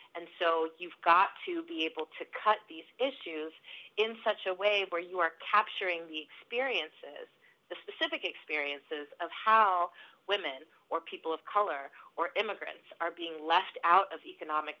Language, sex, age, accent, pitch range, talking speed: English, female, 30-49, American, 165-235 Hz, 160 wpm